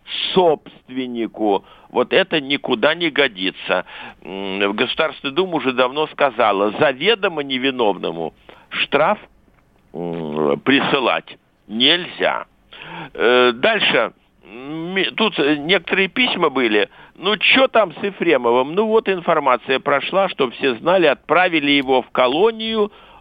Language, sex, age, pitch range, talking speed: Russian, male, 60-79, 150-220 Hz, 100 wpm